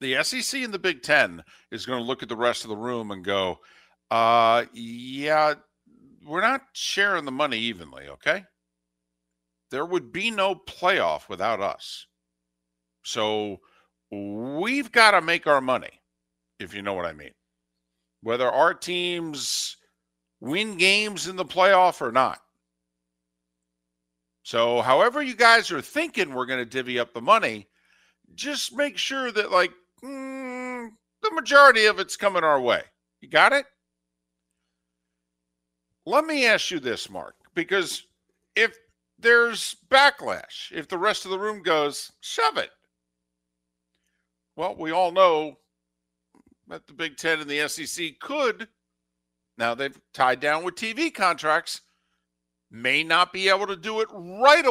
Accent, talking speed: American, 145 wpm